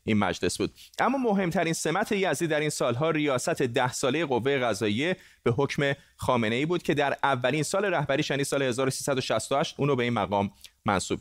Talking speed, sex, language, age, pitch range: 175 wpm, male, Persian, 30-49, 120-155 Hz